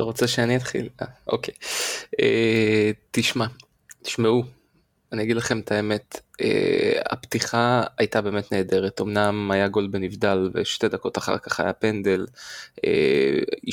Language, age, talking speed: Hebrew, 20-39, 135 wpm